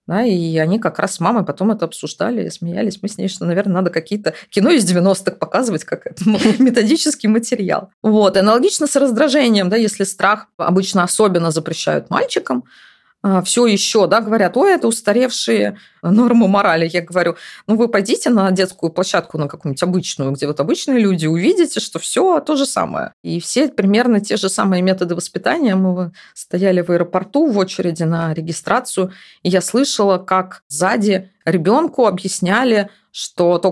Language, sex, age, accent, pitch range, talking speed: Russian, female, 20-39, native, 175-225 Hz, 165 wpm